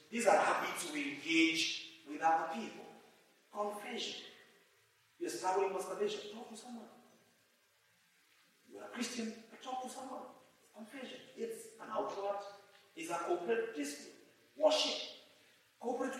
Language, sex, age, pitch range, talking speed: English, male, 40-59, 205-285 Hz, 120 wpm